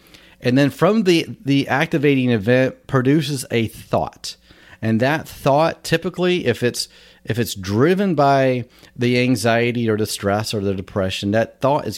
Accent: American